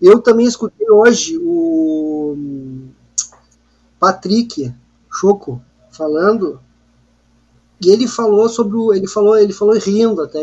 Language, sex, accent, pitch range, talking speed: Portuguese, male, Brazilian, 185-240 Hz, 110 wpm